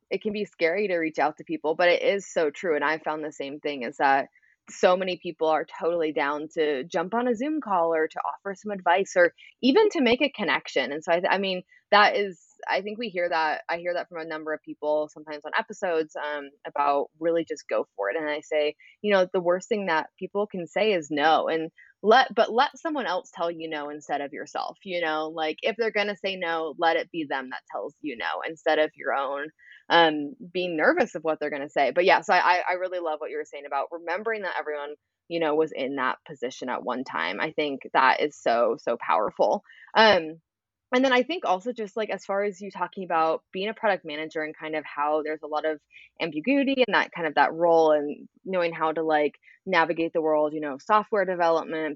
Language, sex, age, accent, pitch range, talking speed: English, female, 20-39, American, 155-200 Hz, 240 wpm